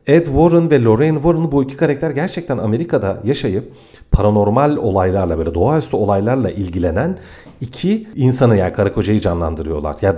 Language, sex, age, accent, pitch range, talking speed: Turkish, male, 40-59, native, 95-160 Hz, 140 wpm